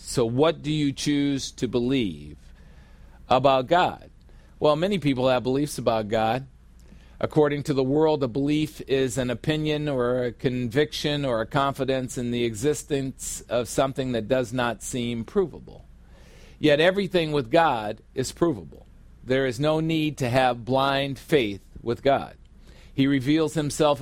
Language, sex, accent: English, male, American